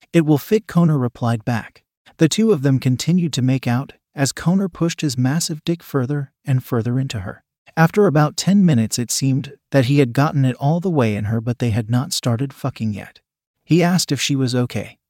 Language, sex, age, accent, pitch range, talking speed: English, male, 40-59, American, 125-155 Hz, 215 wpm